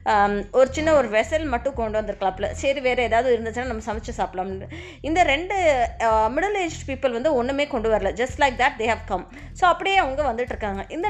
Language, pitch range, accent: Tamil, 210-290 Hz, native